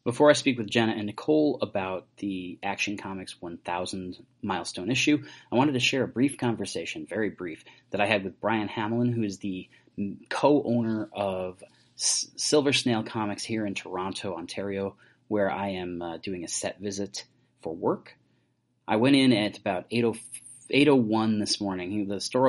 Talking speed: 170 wpm